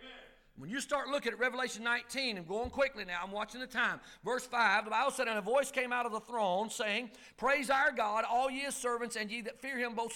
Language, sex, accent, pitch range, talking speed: English, male, American, 235-280 Hz, 250 wpm